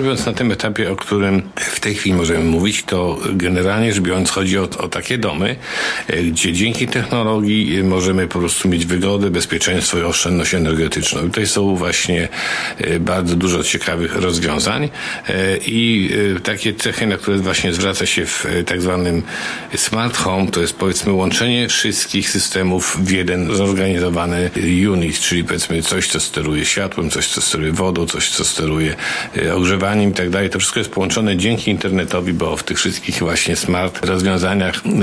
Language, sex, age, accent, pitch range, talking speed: Polish, male, 50-69, native, 85-100 Hz, 155 wpm